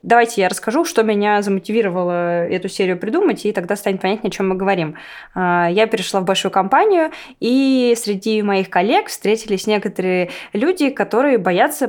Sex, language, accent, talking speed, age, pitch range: female, Russian, native, 155 wpm, 20-39, 180-225 Hz